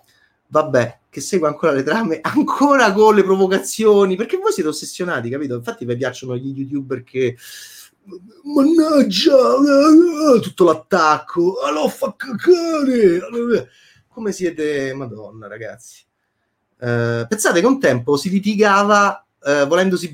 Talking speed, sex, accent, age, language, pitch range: 115 wpm, male, native, 30-49, Italian, 130-195 Hz